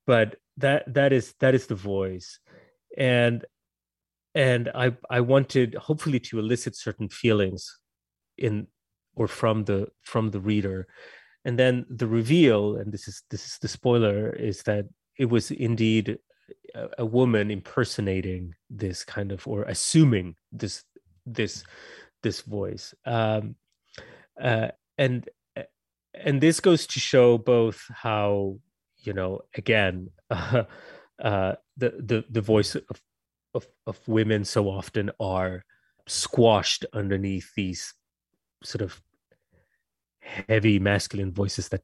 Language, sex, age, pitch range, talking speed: English, male, 30-49, 95-120 Hz, 125 wpm